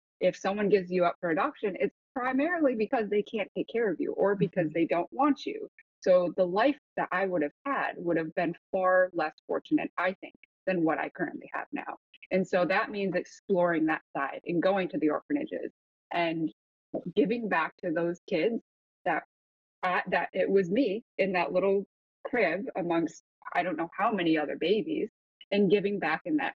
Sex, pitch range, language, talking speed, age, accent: female, 170-230 Hz, English, 190 wpm, 20-39, American